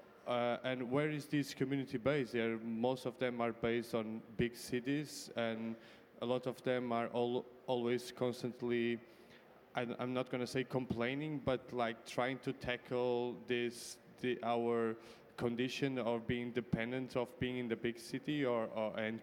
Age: 20-39